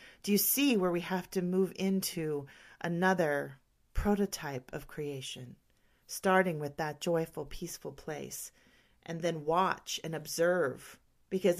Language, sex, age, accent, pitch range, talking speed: English, female, 40-59, American, 150-195 Hz, 130 wpm